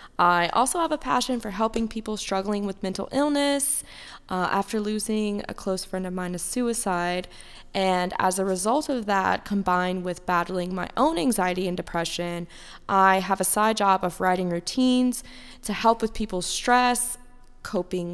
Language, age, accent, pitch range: English, 20-39, American, 180-225 Hz